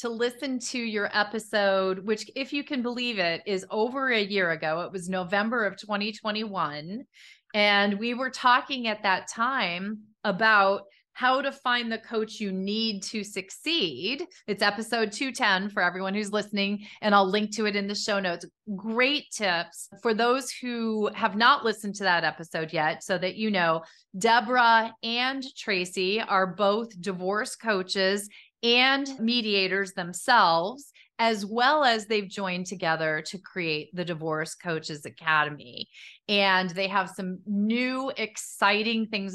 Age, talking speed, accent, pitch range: 30-49, 150 wpm, American, 190-235 Hz